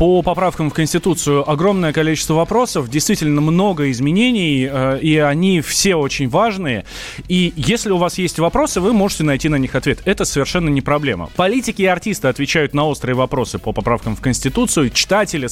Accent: native